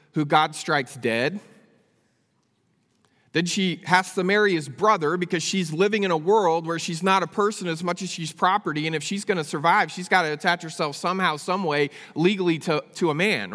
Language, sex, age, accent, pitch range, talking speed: English, male, 40-59, American, 170-210 Hz, 195 wpm